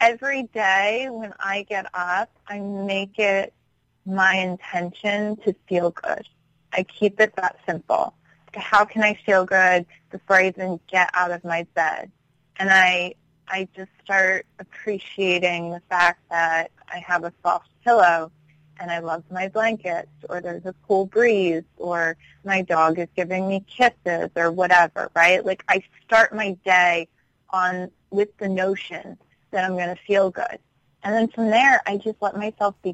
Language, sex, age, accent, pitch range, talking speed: English, female, 20-39, American, 175-210 Hz, 165 wpm